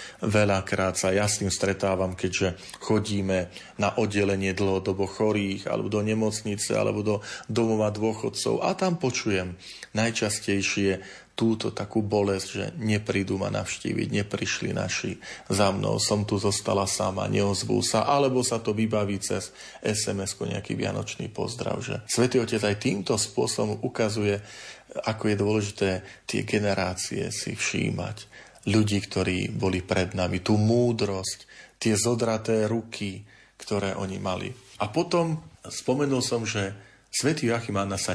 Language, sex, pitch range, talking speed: Slovak, male, 95-115 Hz, 130 wpm